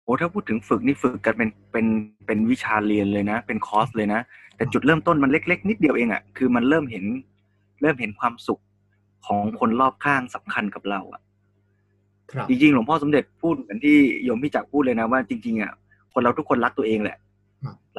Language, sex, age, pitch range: Thai, male, 20-39, 100-145 Hz